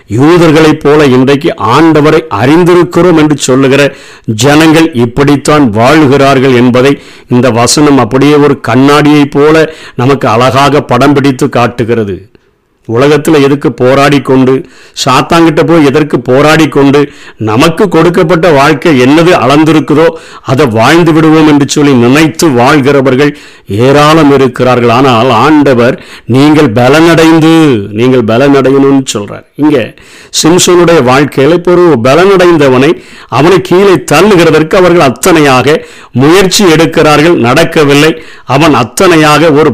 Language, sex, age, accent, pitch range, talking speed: Tamil, male, 50-69, native, 135-165 Hz, 95 wpm